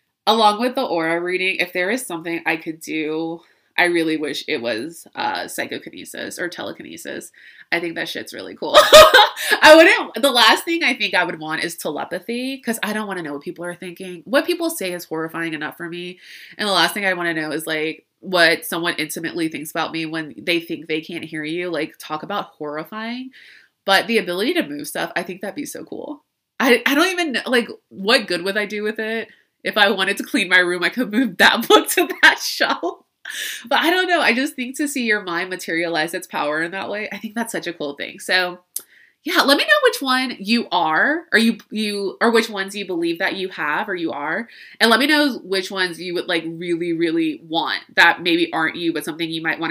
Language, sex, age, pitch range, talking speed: English, female, 20-39, 165-255 Hz, 230 wpm